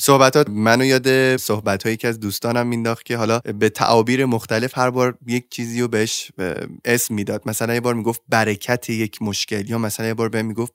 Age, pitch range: 20-39, 110-130 Hz